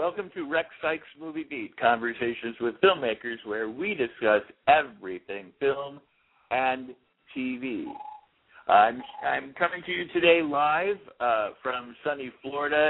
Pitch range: 115-150 Hz